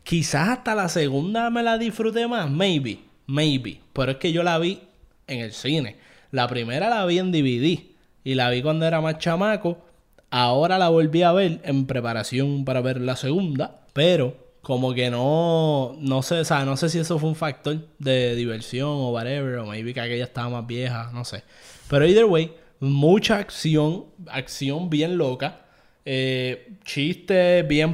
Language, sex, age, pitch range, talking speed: Spanish, male, 20-39, 130-170 Hz, 175 wpm